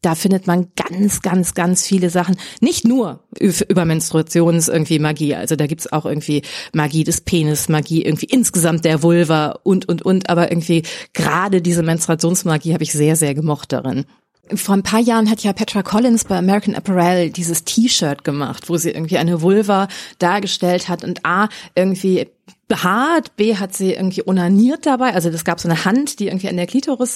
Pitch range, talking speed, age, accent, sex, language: 170-205 Hz, 180 wpm, 30-49, German, female, German